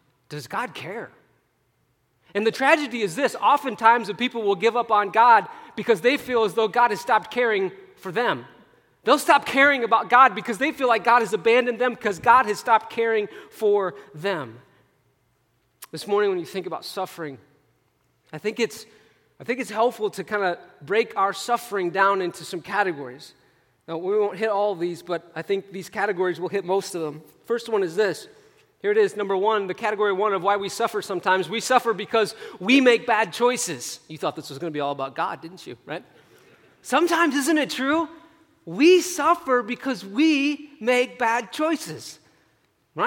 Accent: American